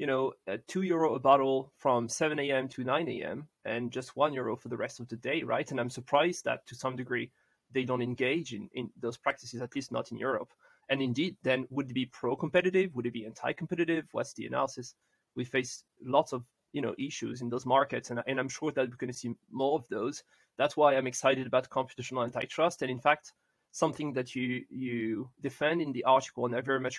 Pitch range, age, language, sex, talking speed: 125-155 Hz, 30-49, English, male, 225 wpm